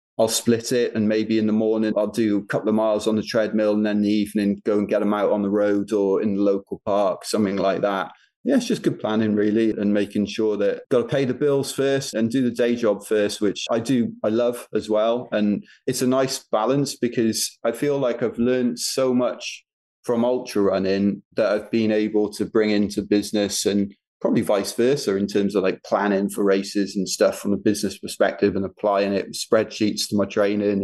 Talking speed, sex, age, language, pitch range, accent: 225 wpm, male, 30-49, English, 105-120 Hz, British